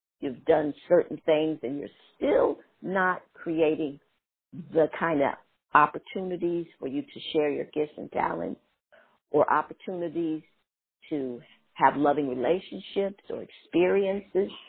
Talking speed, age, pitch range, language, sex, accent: 120 wpm, 50-69, 150-190 Hz, English, female, American